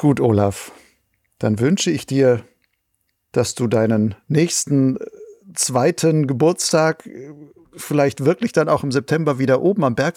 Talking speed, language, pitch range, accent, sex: 130 wpm, German, 125-150 Hz, German, male